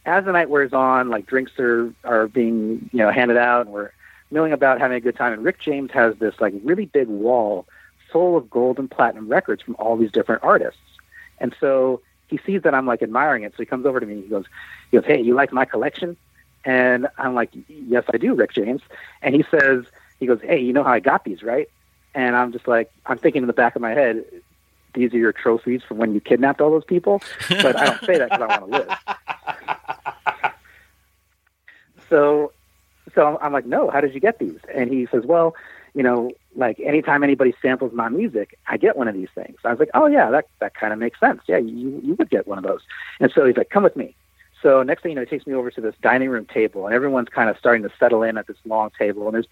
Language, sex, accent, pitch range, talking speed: English, male, American, 115-150 Hz, 245 wpm